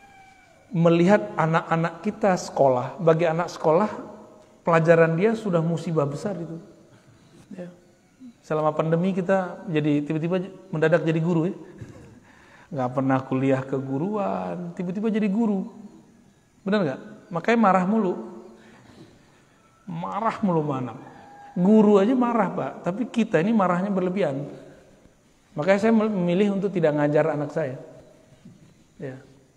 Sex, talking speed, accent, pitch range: male, 115 wpm, native, 155-210 Hz